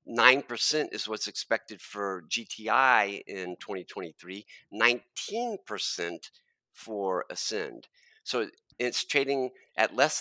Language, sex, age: English, male, 50-69